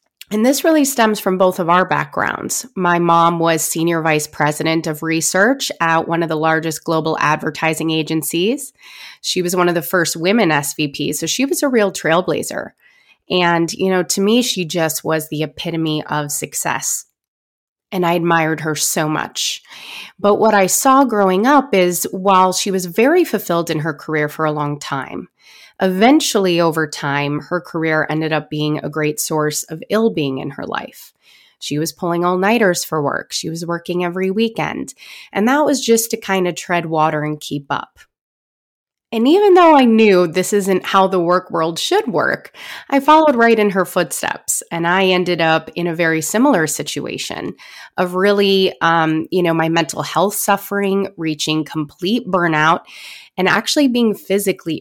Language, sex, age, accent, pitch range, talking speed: English, female, 20-39, American, 160-200 Hz, 175 wpm